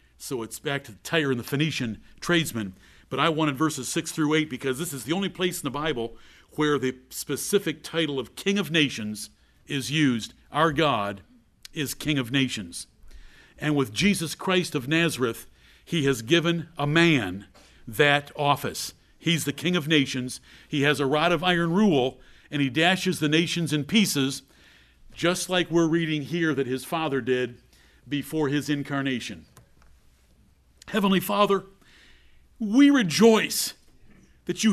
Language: English